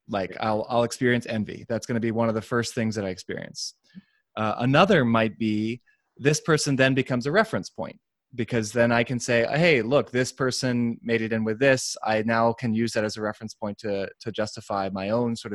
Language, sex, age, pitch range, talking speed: English, male, 20-39, 110-135 Hz, 220 wpm